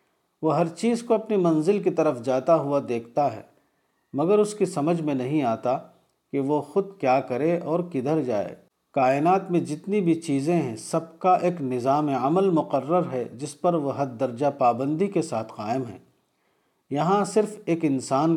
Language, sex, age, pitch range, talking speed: Urdu, male, 50-69, 135-175 Hz, 175 wpm